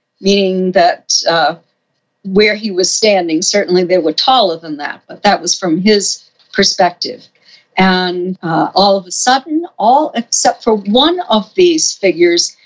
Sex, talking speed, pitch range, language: female, 150 wpm, 185-245 Hz, English